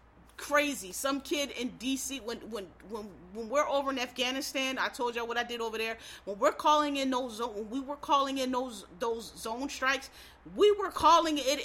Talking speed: 200 wpm